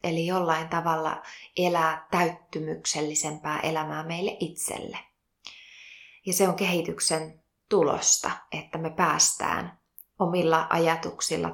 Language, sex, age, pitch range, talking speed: Finnish, female, 20-39, 160-180 Hz, 95 wpm